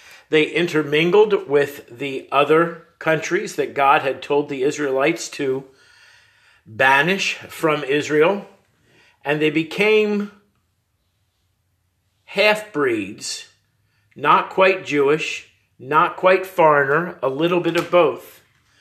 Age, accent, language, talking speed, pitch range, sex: 50-69, American, English, 100 wpm, 140-185 Hz, male